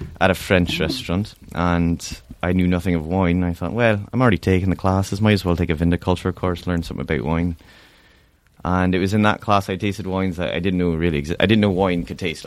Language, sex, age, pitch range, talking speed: English, male, 20-39, 85-95 Hz, 235 wpm